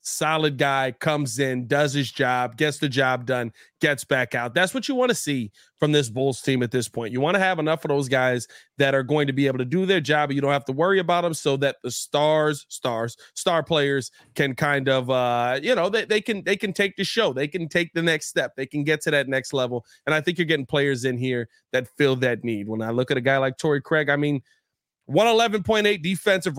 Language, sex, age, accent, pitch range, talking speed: English, male, 30-49, American, 135-165 Hz, 250 wpm